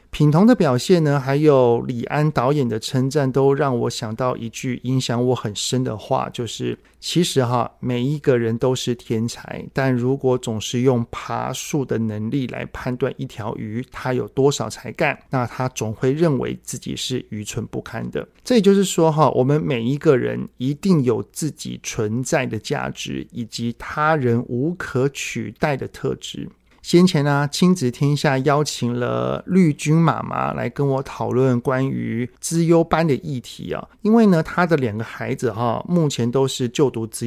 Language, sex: Chinese, male